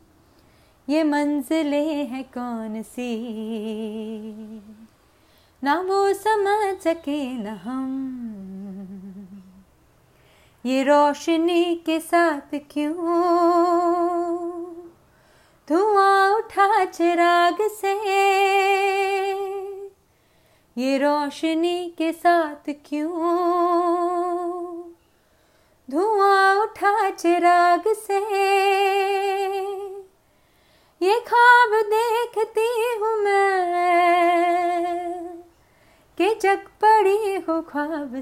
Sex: female